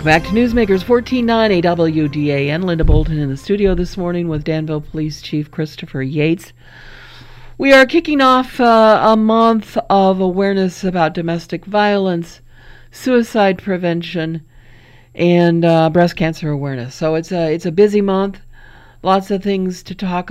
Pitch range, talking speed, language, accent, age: 155-190 Hz, 155 wpm, English, American, 50-69